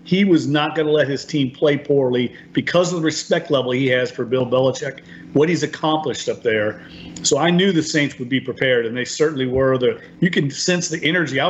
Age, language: 40-59, English